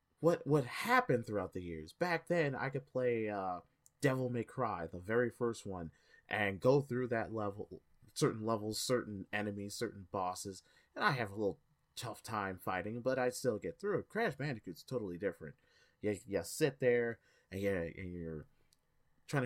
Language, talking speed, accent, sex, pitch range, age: English, 175 wpm, American, male, 100-135 Hz, 30-49